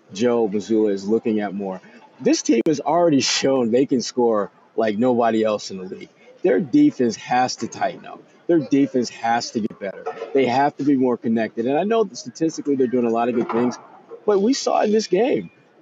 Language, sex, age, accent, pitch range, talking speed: English, male, 40-59, American, 120-160 Hz, 210 wpm